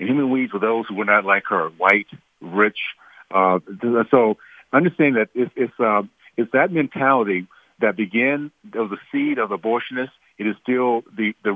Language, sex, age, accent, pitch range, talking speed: English, male, 50-69, American, 100-125 Hz, 175 wpm